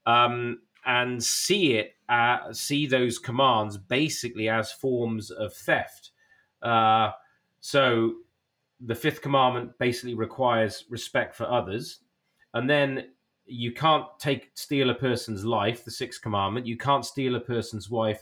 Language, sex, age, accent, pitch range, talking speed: English, male, 30-49, British, 115-140 Hz, 135 wpm